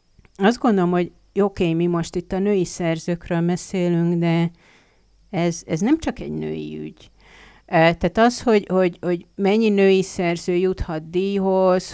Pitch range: 165-195 Hz